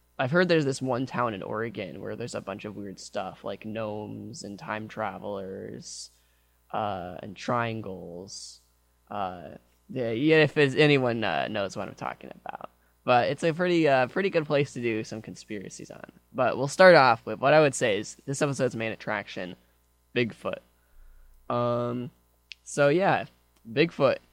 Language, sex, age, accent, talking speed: English, male, 10-29, American, 160 wpm